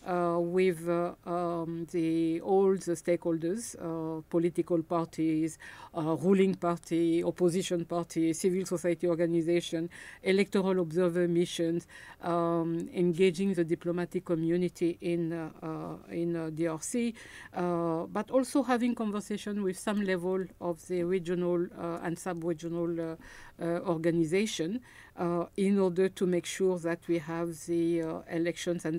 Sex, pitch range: female, 165-185 Hz